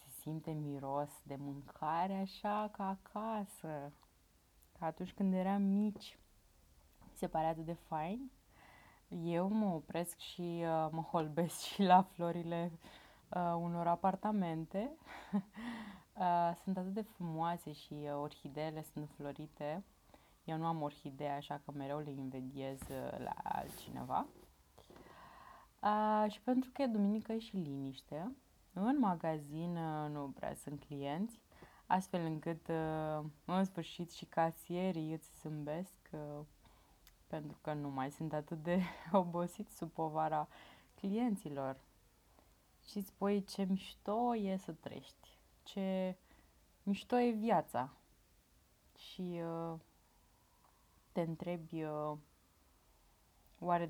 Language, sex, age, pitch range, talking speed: Romanian, female, 20-39, 140-190 Hz, 110 wpm